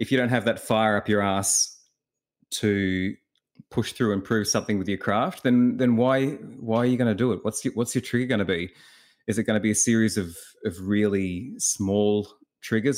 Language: English